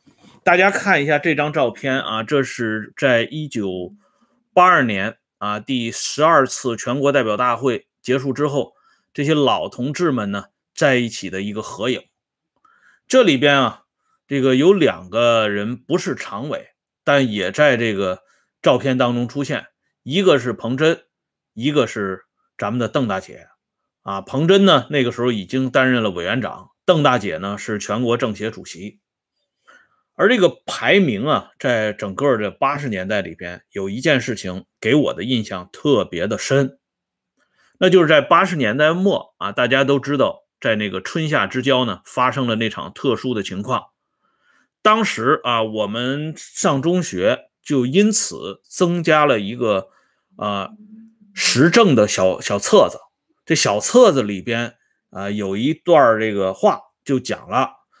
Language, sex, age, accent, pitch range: Swedish, male, 30-49, Chinese, 105-150 Hz